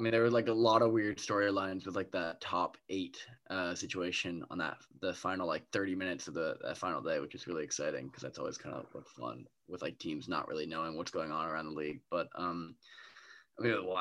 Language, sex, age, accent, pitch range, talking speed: English, male, 20-39, American, 100-140 Hz, 235 wpm